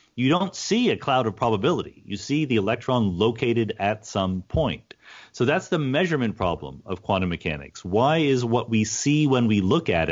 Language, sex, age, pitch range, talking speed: English, male, 40-59, 100-145 Hz, 190 wpm